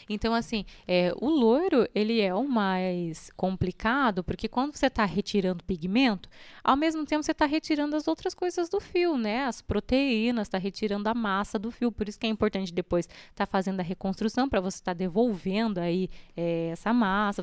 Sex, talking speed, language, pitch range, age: female, 190 wpm, Portuguese, 185-250 Hz, 20-39